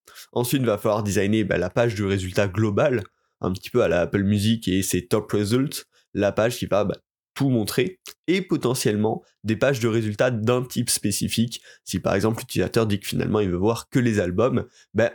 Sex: male